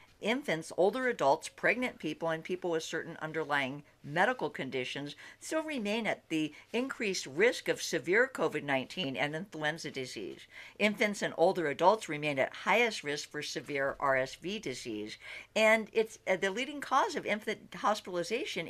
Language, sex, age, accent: English, female, 60-79, American